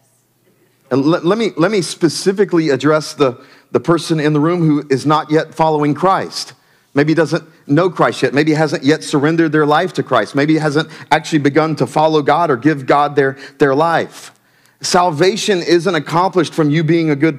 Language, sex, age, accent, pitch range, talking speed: English, male, 40-59, American, 145-185 Hz, 185 wpm